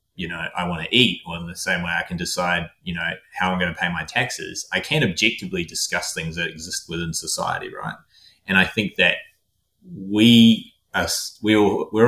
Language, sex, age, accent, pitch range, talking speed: English, male, 20-39, Australian, 85-100 Hz, 190 wpm